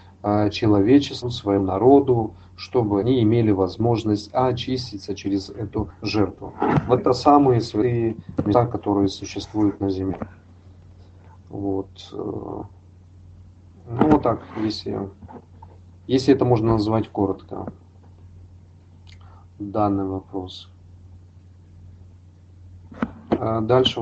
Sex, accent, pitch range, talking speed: male, native, 90-115 Hz, 85 wpm